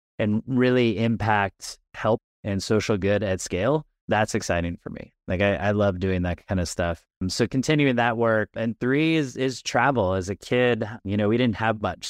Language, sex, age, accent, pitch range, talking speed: English, male, 20-39, American, 95-115 Hz, 200 wpm